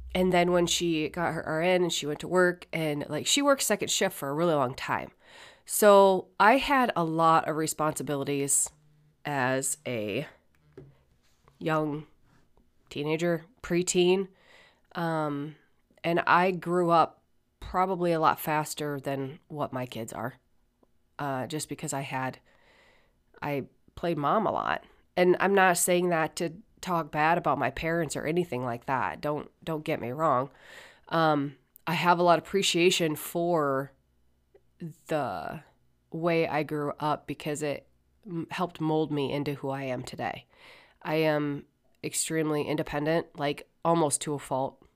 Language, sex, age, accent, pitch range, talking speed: English, female, 30-49, American, 145-175 Hz, 145 wpm